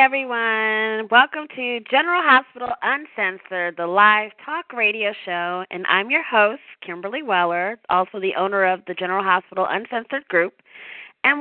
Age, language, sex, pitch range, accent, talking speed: 30-49, English, female, 185-255 Hz, American, 145 wpm